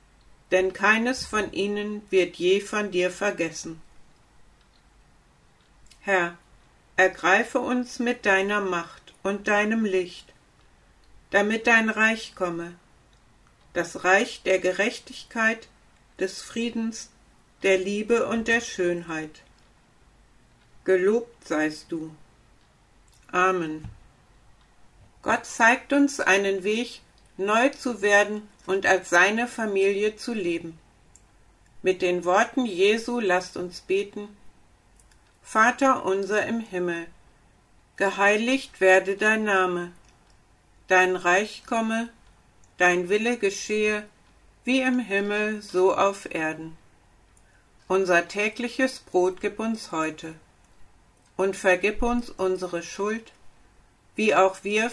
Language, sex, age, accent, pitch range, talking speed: German, female, 60-79, German, 170-220 Hz, 100 wpm